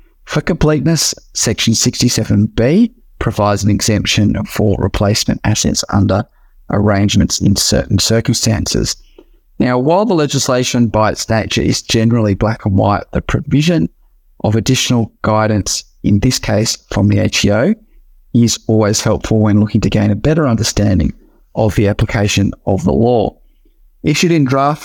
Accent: Australian